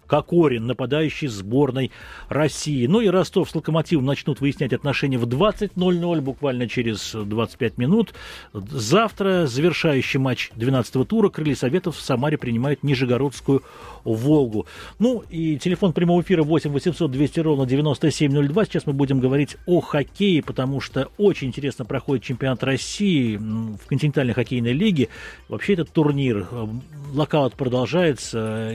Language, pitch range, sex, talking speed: Russian, 120-155 Hz, male, 130 wpm